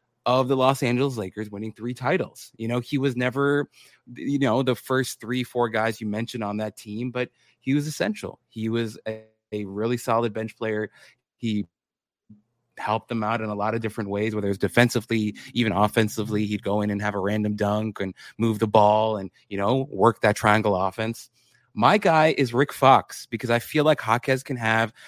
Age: 20-39